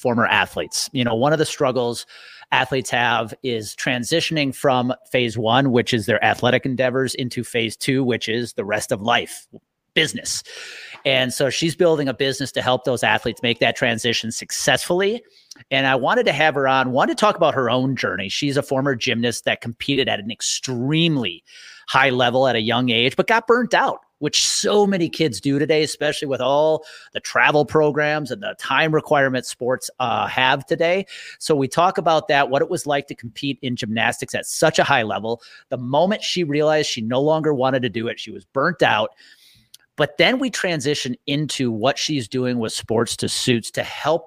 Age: 30-49